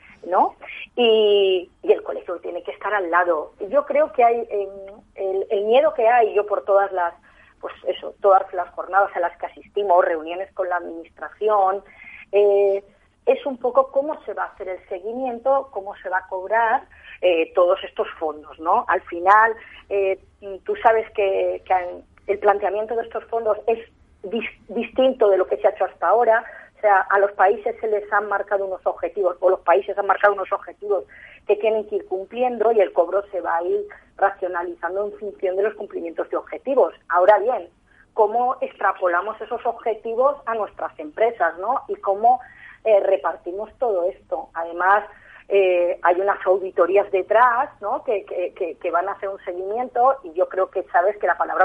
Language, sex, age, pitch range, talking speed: Spanish, female, 30-49, 185-225 Hz, 180 wpm